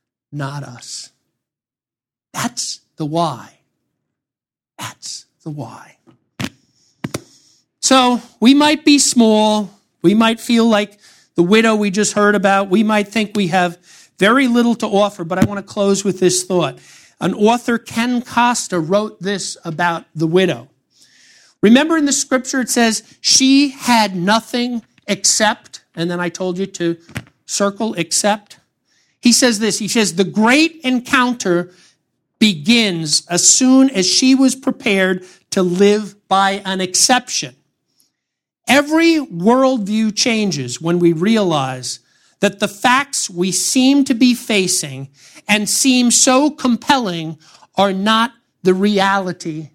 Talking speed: 130 wpm